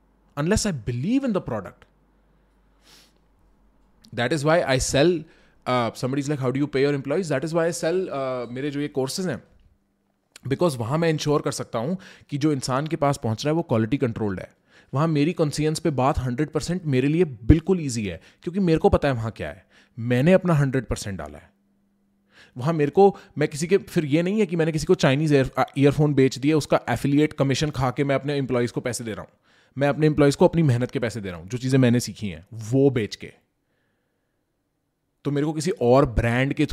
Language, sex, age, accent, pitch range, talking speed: English, male, 20-39, Indian, 120-155 Hz, 165 wpm